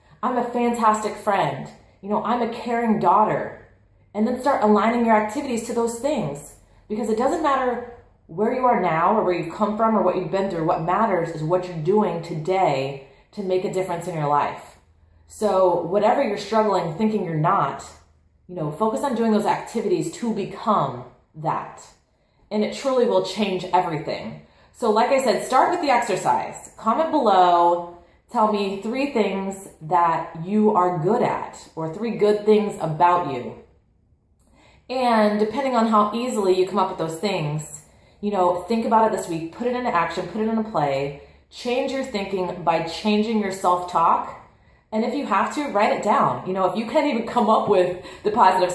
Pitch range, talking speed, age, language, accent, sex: 175-225 Hz, 190 wpm, 30-49, English, American, female